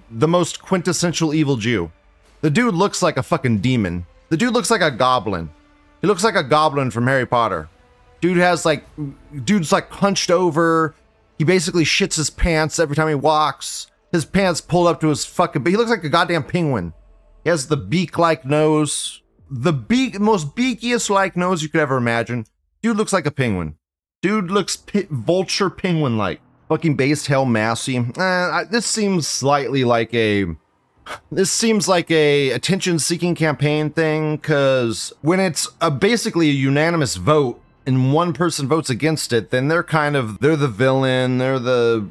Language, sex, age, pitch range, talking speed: English, male, 30-49, 120-175 Hz, 170 wpm